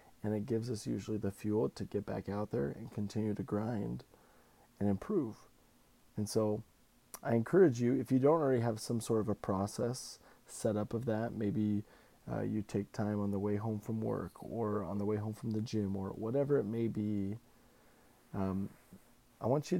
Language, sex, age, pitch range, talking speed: English, male, 20-39, 105-120 Hz, 195 wpm